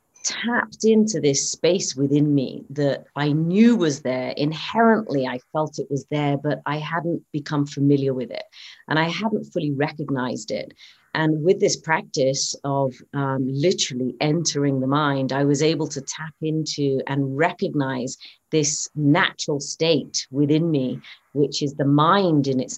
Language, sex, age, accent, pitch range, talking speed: English, female, 40-59, British, 140-165 Hz, 155 wpm